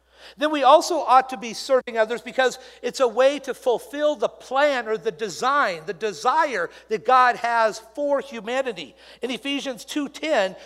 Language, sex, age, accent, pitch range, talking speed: English, male, 50-69, American, 215-290 Hz, 170 wpm